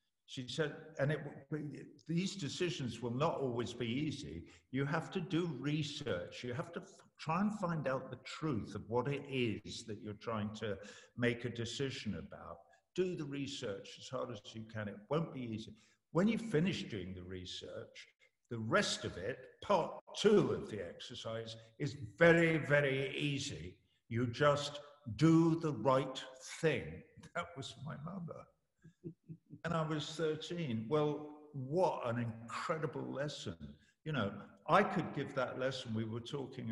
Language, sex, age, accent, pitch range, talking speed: English, male, 50-69, British, 110-155 Hz, 155 wpm